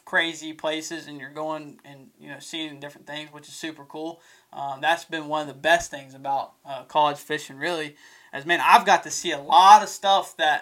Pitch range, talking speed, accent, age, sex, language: 150-175 Hz, 220 wpm, American, 20-39, male, English